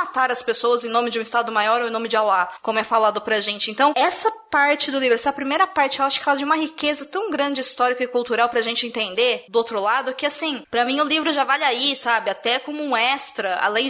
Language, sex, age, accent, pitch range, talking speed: Portuguese, female, 20-39, Brazilian, 220-280 Hz, 260 wpm